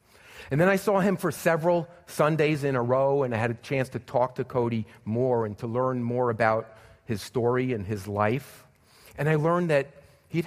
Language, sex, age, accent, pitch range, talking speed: English, male, 40-59, American, 115-145 Hz, 205 wpm